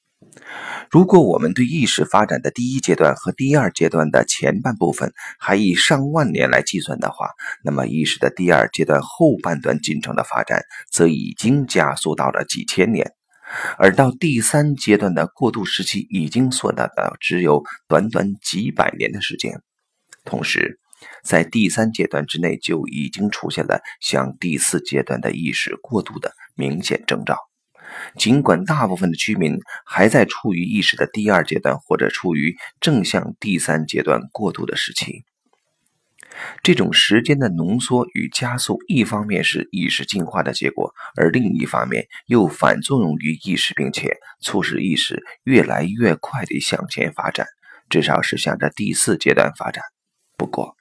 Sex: male